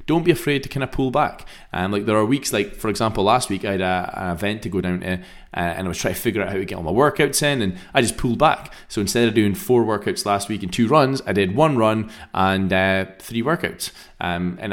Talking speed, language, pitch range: 275 wpm, English, 90-120 Hz